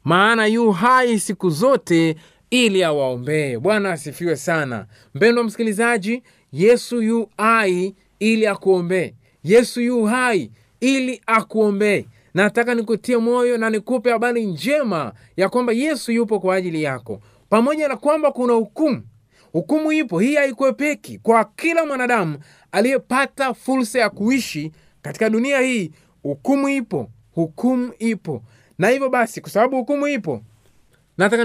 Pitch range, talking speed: 175-235 Hz, 130 wpm